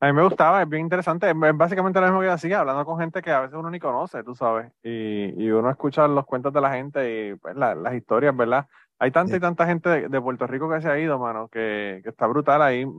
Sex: male